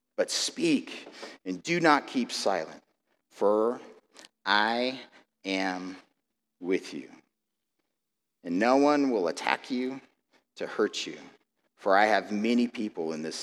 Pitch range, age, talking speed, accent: 110-140 Hz, 40-59, 125 wpm, American